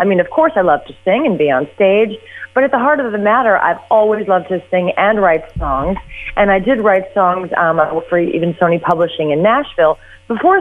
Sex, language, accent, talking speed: female, English, American, 225 wpm